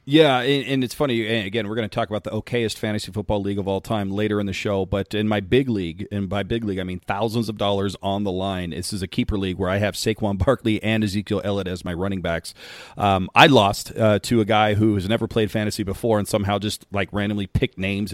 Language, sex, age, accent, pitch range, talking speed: English, male, 40-59, American, 100-115 Hz, 250 wpm